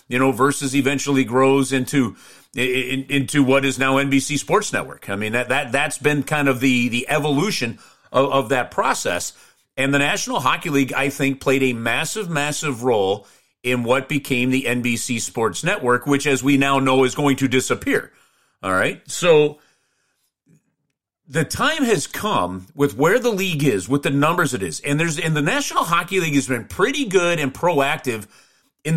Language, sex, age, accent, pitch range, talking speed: English, male, 40-59, American, 130-165 Hz, 180 wpm